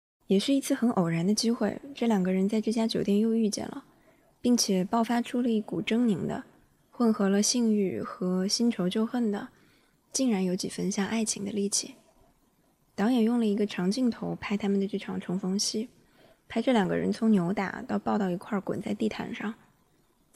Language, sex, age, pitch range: Chinese, female, 20-39, 195-230 Hz